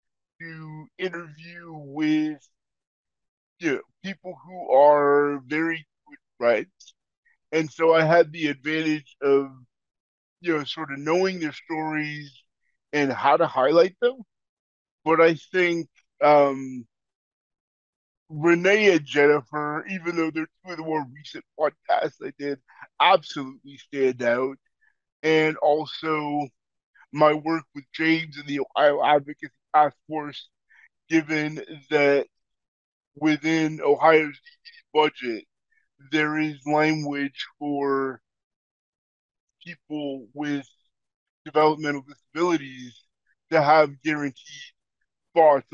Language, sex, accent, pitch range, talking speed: English, male, American, 140-165 Hz, 105 wpm